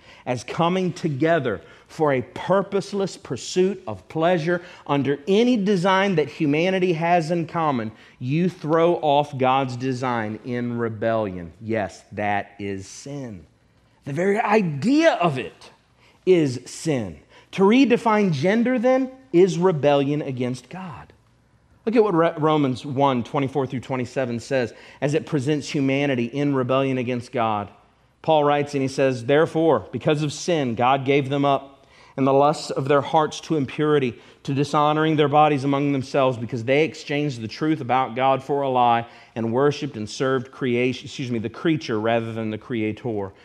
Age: 40-59